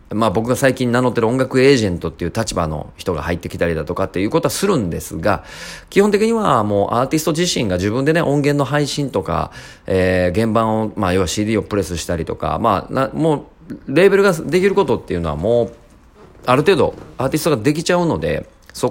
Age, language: 40-59, Japanese